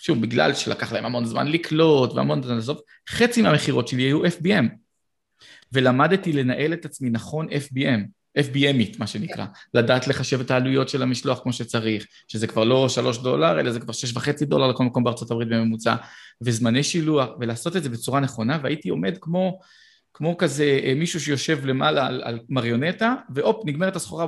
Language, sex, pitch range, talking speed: Hebrew, male, 120-160 Hz, 170 wpm